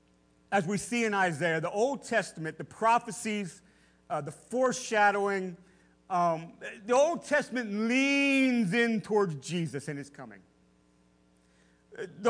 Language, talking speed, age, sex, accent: English, 120 wpm, 50-69, male, American